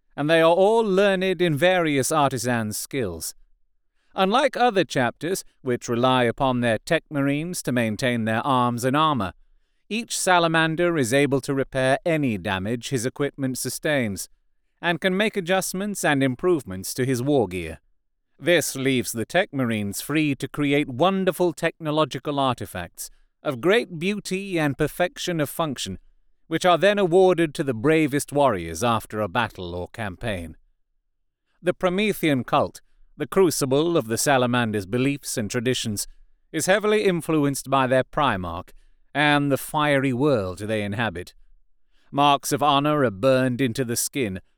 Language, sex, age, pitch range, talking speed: English, male, 40-59, 120-165 Hz, 145 wpm